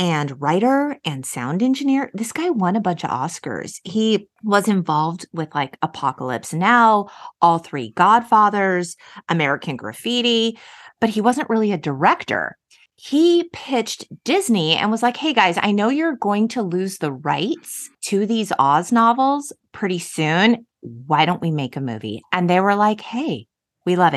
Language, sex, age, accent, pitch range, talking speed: English, female, 30-49, American, 150-225 Hz, 160 wpm